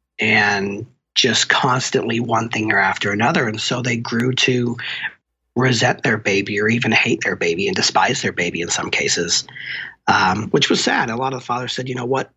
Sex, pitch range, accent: male, 110-125 Hz, American